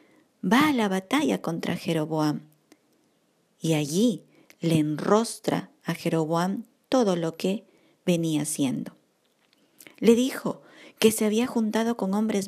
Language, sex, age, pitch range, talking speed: Spanish, female, 50-69, 165-235 Hz, 120 wpm